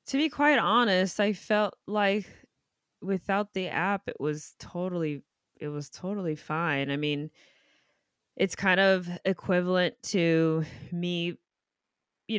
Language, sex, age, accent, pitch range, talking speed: English, female, 20-39, American, 150-185 Hz, 125 wpm